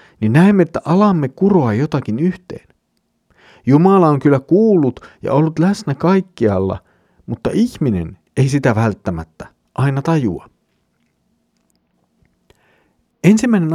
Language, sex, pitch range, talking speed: Finnish, male, 115-170 Hz, 100 wpm